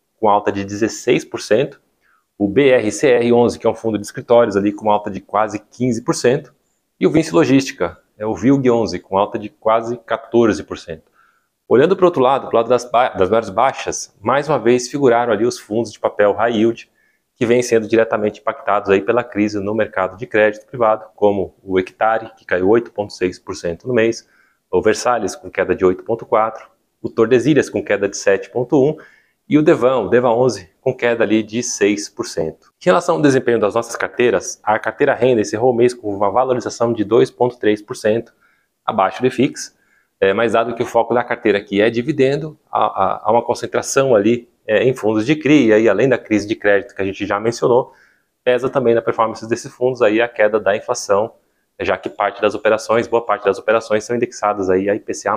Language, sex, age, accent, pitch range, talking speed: Portuguese, male, 30-49, Brazilian, 105-125 Hz, 190 wpm